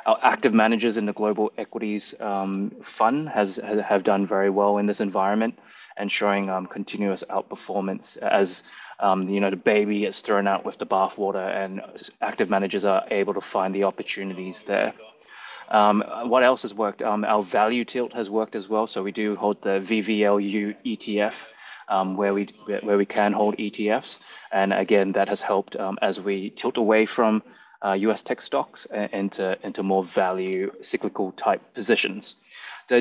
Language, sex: English, male